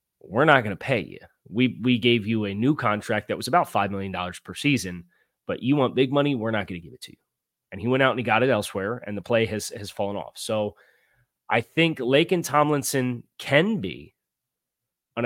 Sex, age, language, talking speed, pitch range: male, 30-49, English, 230 wpm, 95-120 Hz